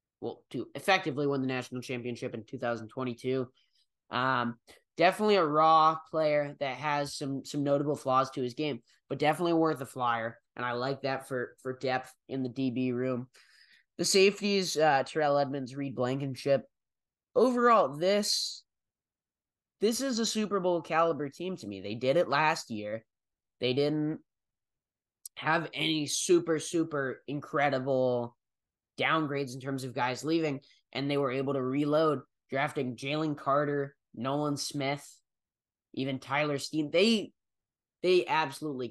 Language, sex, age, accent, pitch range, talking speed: English, male, 10-29, American, 125-155 Hz, 140 wpm